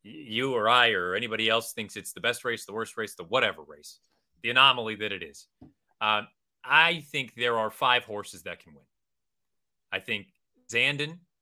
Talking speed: 185 wpm